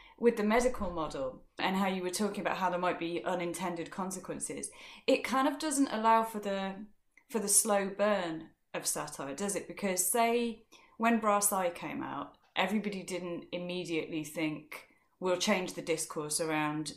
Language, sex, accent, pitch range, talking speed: English, female, British, 160-210 Hz, 165 wpm